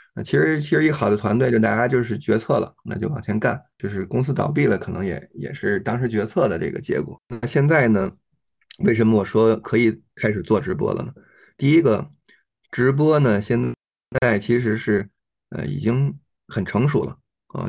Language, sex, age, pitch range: Chinese, male, 20-39, 110-140 Hz